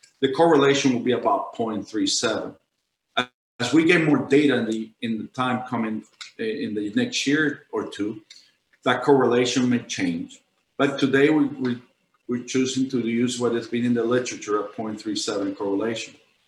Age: 50-69